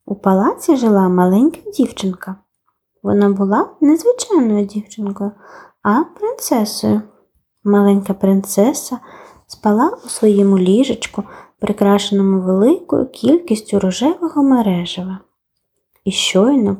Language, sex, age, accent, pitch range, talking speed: Ukrainian, female, 20-39, native, 205-305 Hz, 90 wpm